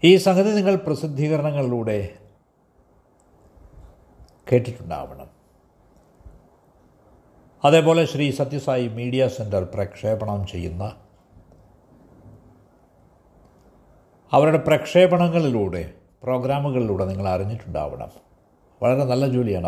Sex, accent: male, native